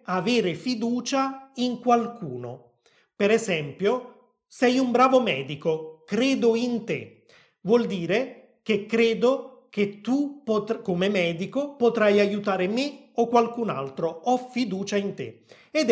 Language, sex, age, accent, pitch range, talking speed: Italian, male, 30-49, native, 175-245 Hz, 120 wpm